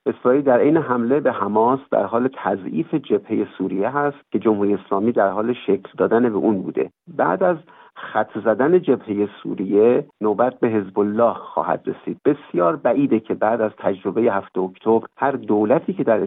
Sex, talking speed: male, 170 wpm